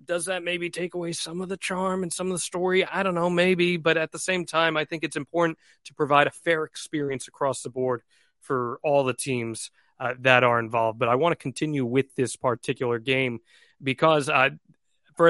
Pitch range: 125-170 Hz